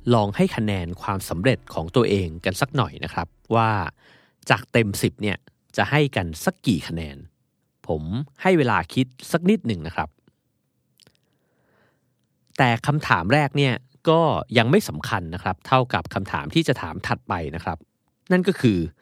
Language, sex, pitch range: Thai, male, 100-140 Hz